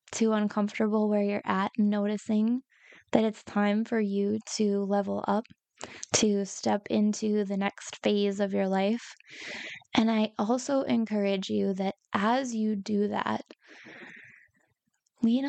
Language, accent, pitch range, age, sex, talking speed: English, American, 200-225 Hz, 10-29, female, 130 wpm